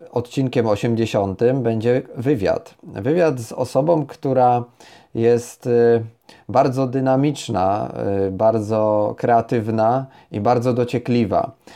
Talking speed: 80 wpm